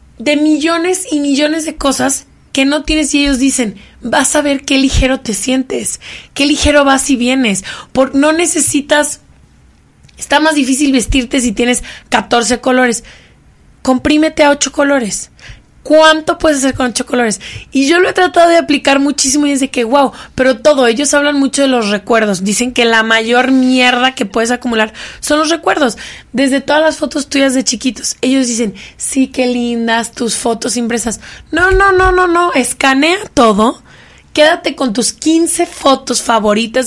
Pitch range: 240-290 Hz